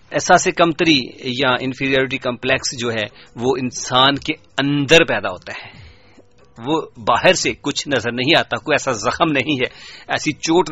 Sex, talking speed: male, 170 wpm